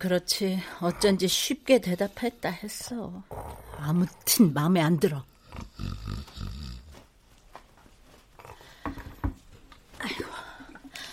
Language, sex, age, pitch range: Korean, female, 50-69, 155-230 Hz